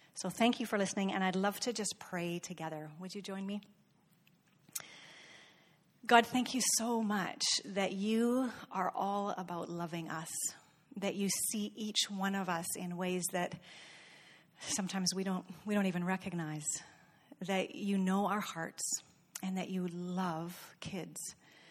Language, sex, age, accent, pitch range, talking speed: English, female, 40-59, American, 175-205 Hz, 150 wpm